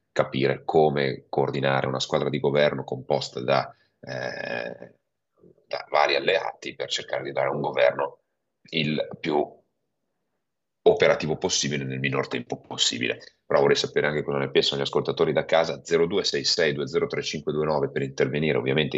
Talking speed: 135 wpm